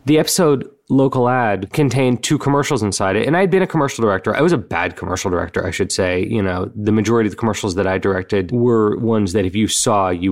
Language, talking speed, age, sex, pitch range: English, 240 wpm, 30-49, male, 100-135 Hz